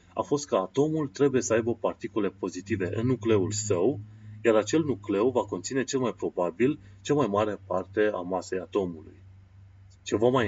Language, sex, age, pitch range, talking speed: Romanian, male, 30-49, 95-125 Hz, 165 wpm